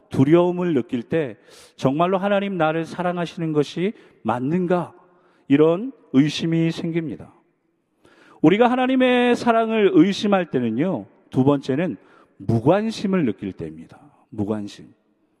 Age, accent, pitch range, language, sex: 40-59, native, 150-225 Hz, Korean, male